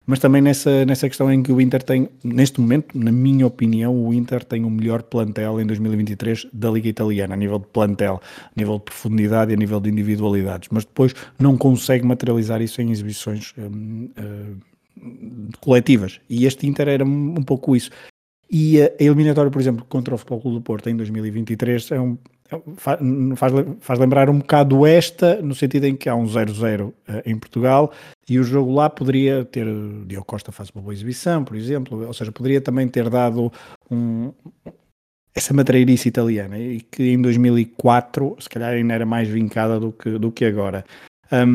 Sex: male